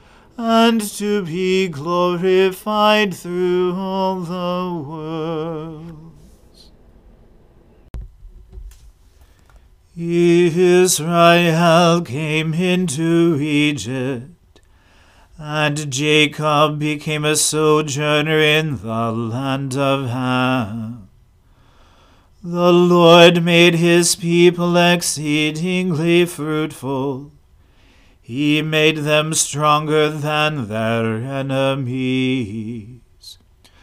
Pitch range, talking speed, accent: 125-170 Hz, 65 wpm, American